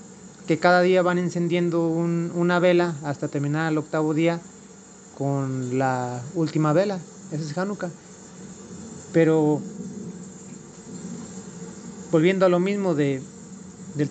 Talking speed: 115 wpm